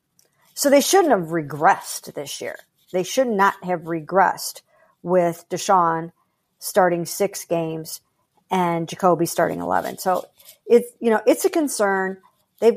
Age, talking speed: 50-69, 125 wpm